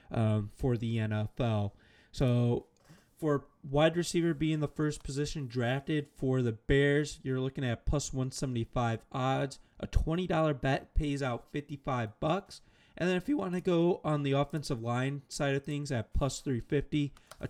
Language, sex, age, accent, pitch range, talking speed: English, male, 20-39, American, 120-150 Hz, 160 wpm